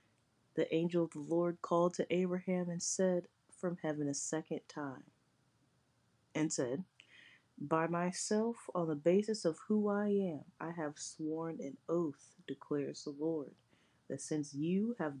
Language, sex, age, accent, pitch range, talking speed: English, female, 30-49, American, 145-185 Hz, 150 wpm